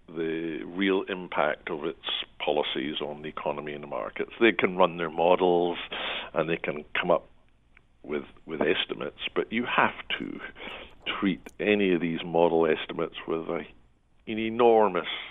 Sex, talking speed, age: male, 150 wpm, 60-79